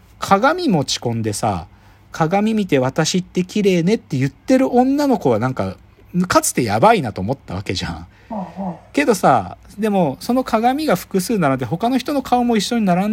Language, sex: Japanese, male